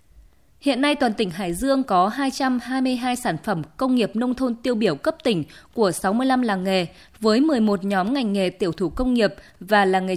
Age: 20-39